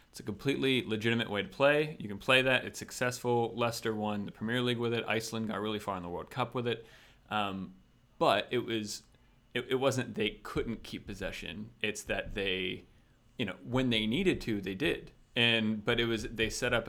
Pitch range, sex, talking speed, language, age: 100-120 Hz, male, 210 wpm, English, 30-49